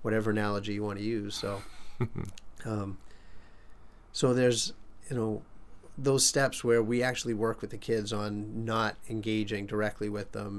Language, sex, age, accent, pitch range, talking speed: English, male, 30-49, American, 105-115 Hz, 155 wpm